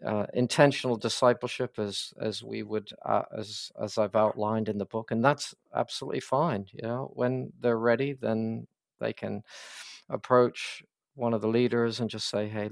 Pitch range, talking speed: 110-130 Hz, 170 wpm